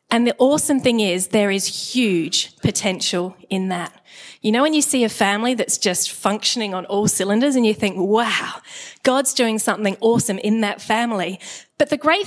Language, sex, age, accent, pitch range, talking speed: English, female, 30-49, Australian, 205-270 Hz, 185 wpm